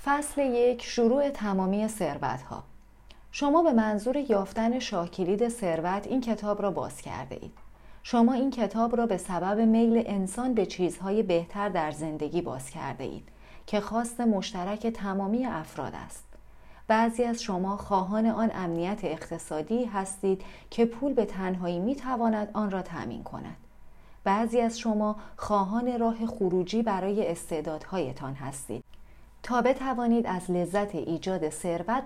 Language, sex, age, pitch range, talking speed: Persian, female, 30-49, 175-240 Hz, 135 wpm